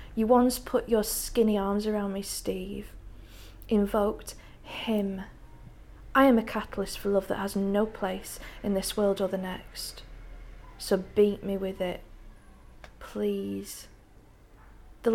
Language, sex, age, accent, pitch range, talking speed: English, female, 40-59, British, 195-225 Hz, 135 wpm